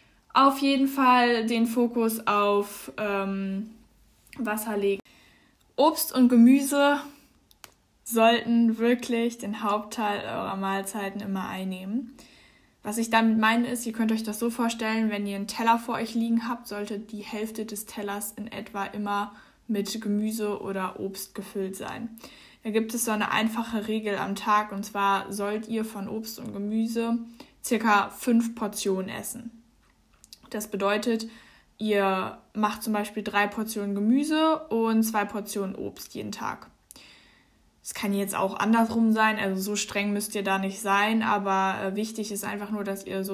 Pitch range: 200-230 Hz